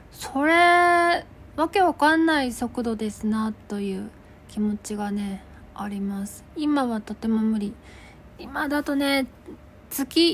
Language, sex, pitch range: Japanese, female, 210-295 Hz